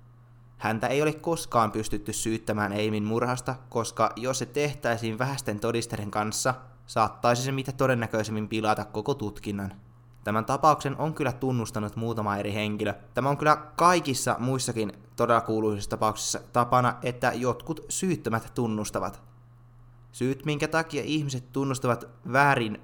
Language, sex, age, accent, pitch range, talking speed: Finnish, male, 20-39, native, 110-130 Hz, 125 wpm